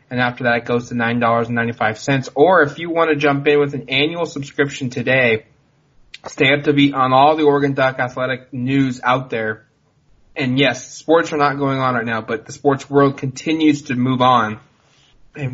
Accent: American